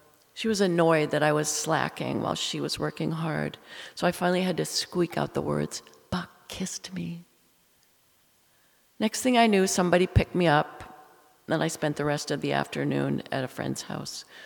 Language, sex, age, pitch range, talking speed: English, female, 40-59, 145-190 Hz, 185 wpm